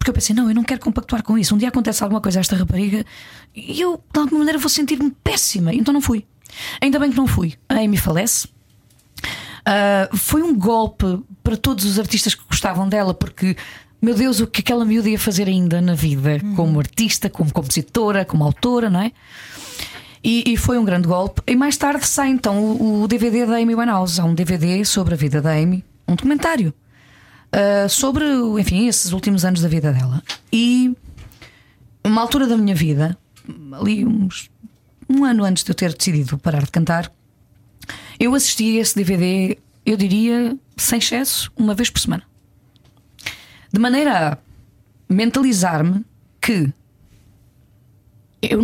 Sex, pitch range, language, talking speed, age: female, 155-230 Hz, Portuguese, 175 wpm, 20-39